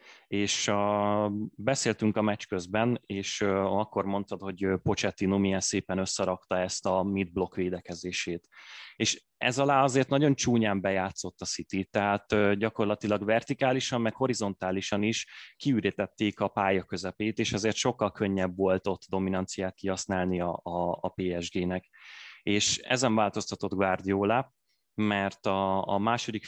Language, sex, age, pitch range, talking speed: Hungarian, male, 20-39, 95-105 Hz, 120 wpm